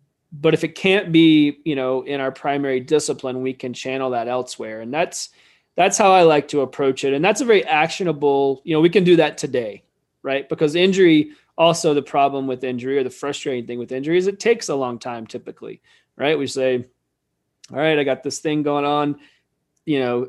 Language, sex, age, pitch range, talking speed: English, male, 20-39, 130-155 Hz, 210 wpm